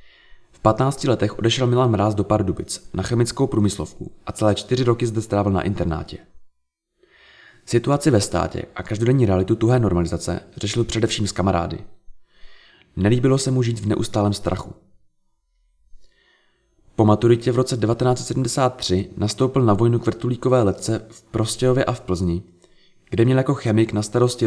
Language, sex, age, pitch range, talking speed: Czech, male, 20-39, 95-125 Hz, 145 wpm